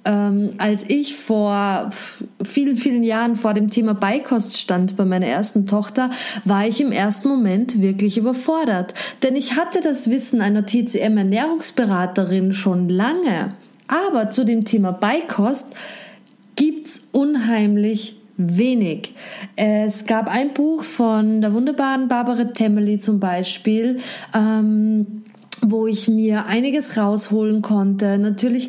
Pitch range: 205-250 Hz